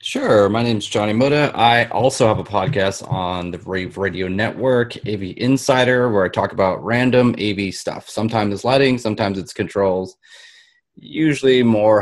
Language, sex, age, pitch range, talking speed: English, male, 30-49, 100-125 Hz, 165 wpm